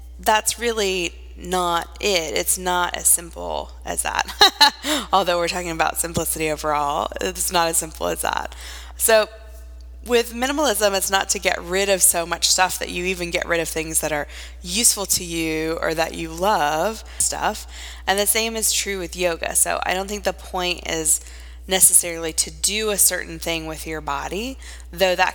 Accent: American